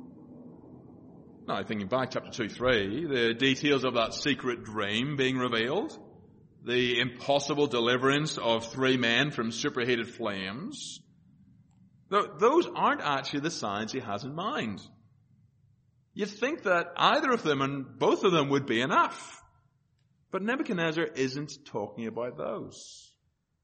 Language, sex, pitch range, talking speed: English, male, 110-140 Hz, 125 wpm